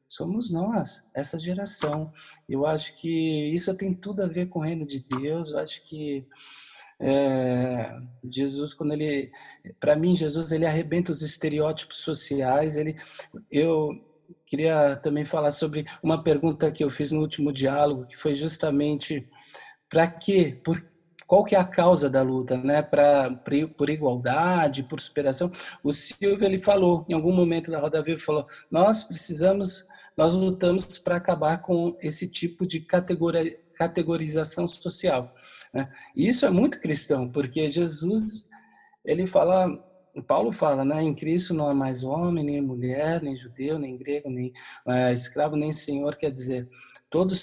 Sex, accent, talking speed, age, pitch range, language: male, Brazilian, 145 wpm, 20-39, 145-180 Hz, Portuguese